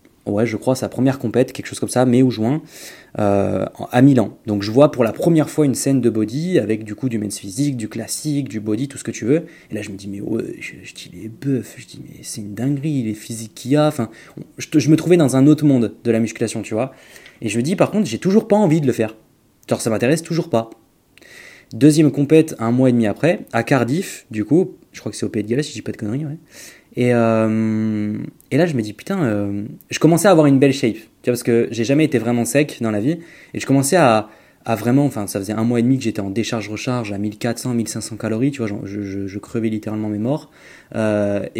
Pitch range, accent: 110-150 Hz, French